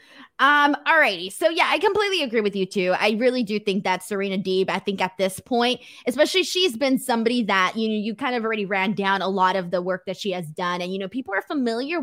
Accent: American